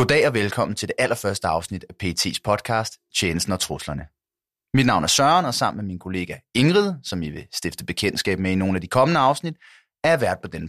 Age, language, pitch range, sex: 30-49, Danish, 100-135 Hz, male